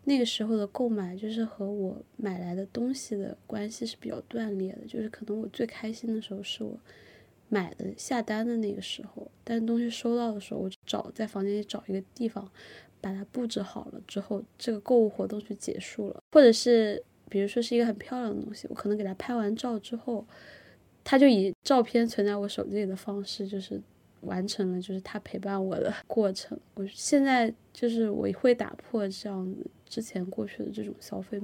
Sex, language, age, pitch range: female, Chinese, 20-39, 200-230 Hz